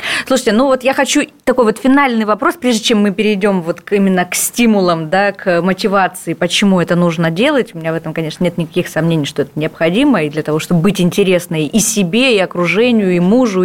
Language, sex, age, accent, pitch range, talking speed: Russian, female, 20-39, native, 170-220 Hz, 205 wpm